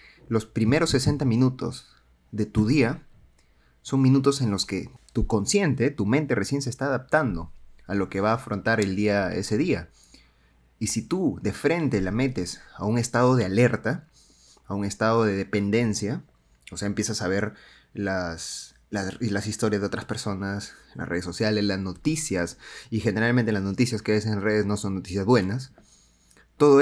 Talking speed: 170 wpm